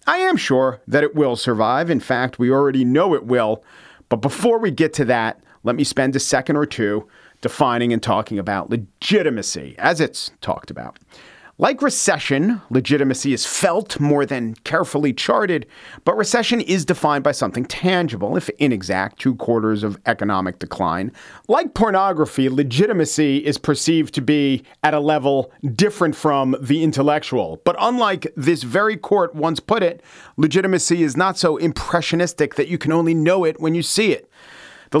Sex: male